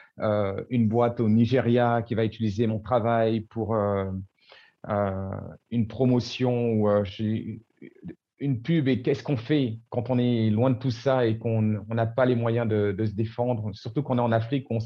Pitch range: 115-140 Hz